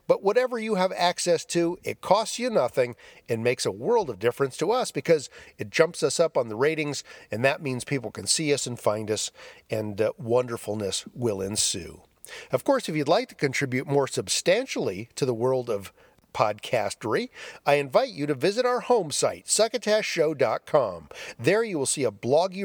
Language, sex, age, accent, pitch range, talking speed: English, male, 50-69, American, 125-195 Hz, 185 wpm